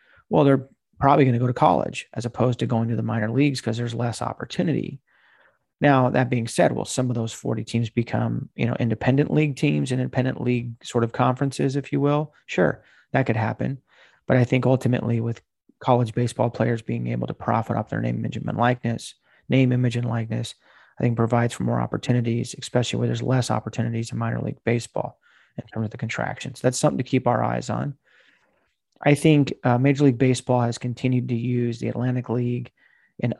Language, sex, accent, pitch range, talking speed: English, male, American, 115-130 Hz, 200 wpm